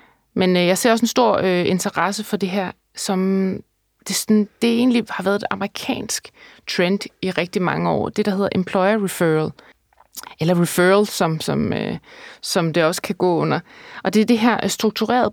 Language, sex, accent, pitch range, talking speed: Danish, female, native, 180-220 Hz, 170 wpm